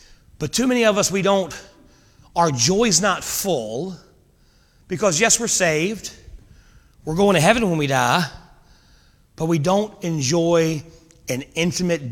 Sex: male